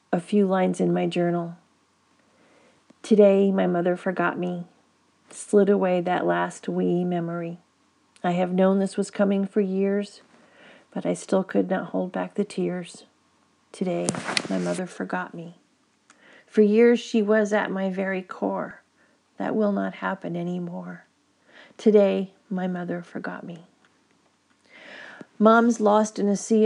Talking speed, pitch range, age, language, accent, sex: 140 wpm, 175-205 Hz, 40-59, English, American, female